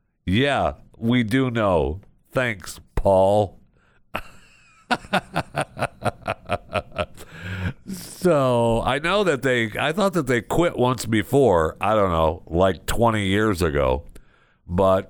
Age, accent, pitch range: 60-79, American, 75-110 Hz